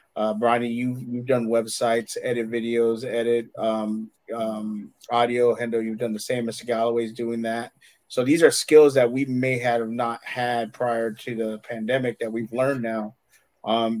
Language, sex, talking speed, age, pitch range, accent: English, male, 170 wpm, 30-49, 115-130 Hz, American